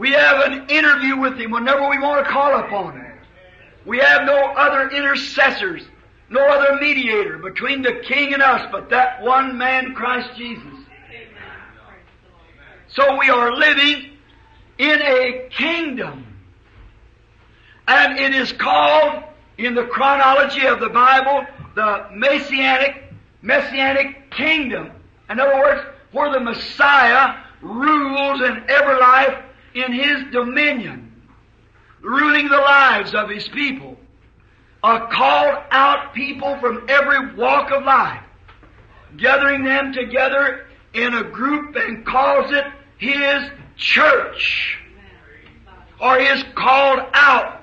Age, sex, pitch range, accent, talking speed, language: 50-69, male, 240-280 Hz, American, 120 wpm, English